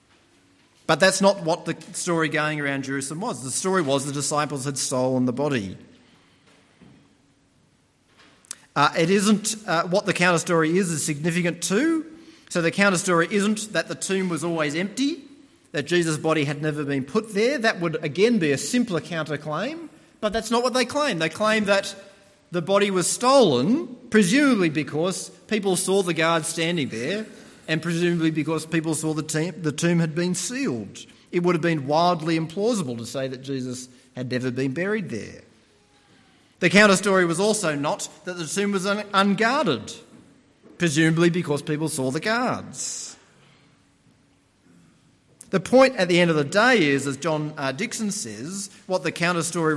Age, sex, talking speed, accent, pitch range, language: 40-59, male, 160 wpm, Australian, 155-210 Hz, English